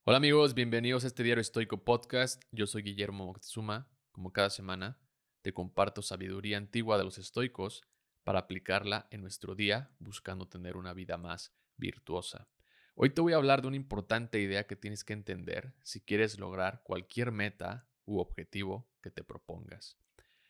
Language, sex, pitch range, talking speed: Spanish, male, 95-125 Hz, 165 wpm